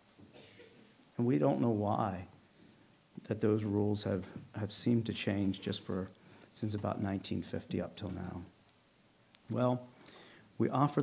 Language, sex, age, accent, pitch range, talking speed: English, male, 50-69, American, 105-135 Hz, 130 wpm